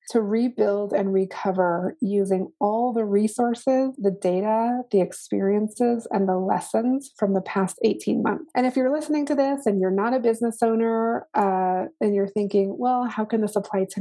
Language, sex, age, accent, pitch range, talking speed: English, female, 30-49, American, 190-230 Hz, 180 wpm